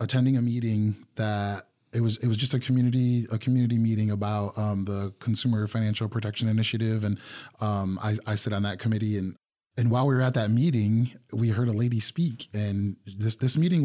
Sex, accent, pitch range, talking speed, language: male, American, 105-130 Hz, 200 wpm, English